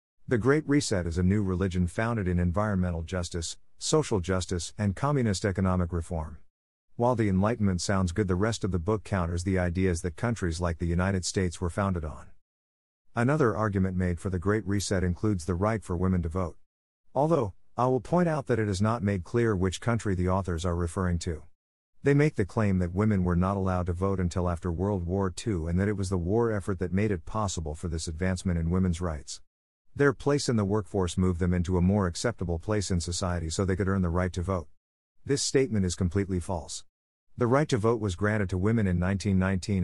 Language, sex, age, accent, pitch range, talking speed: English, male, 50-69, American, 90-105 Hz, 210 wpm